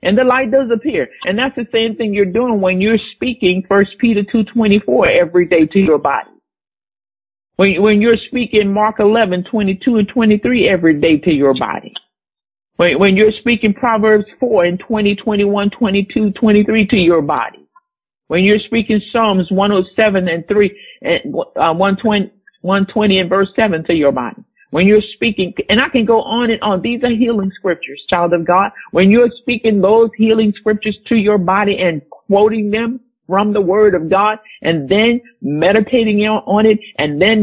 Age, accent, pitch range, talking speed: 50-69, American, 190-225 Hz, 175 wpm